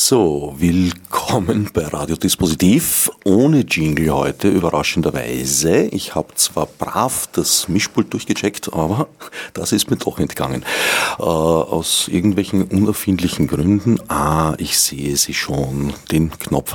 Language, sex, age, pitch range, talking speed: German, male, 50-69, 75-95 Hz, 120 wpm